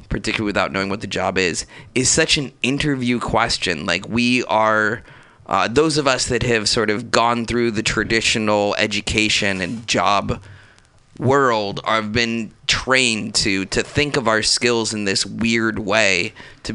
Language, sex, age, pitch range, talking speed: English, male, 20-39, 105-125 Hz, 160 wpm